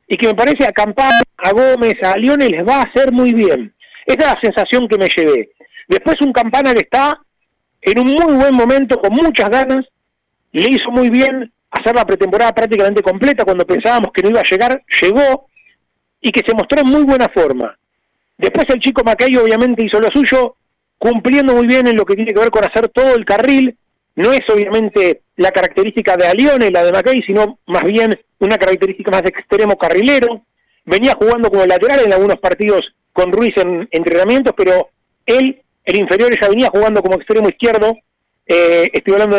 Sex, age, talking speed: male, 40-59, 195 wpm